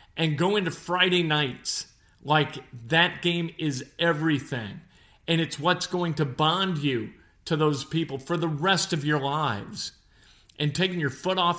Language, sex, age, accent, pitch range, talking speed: English, male, 40-59, American, 135-175 Hz, 160 wpm